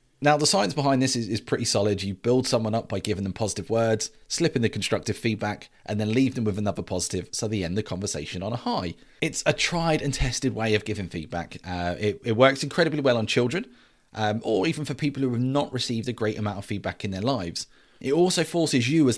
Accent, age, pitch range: British, 30-49, 100-135 Hz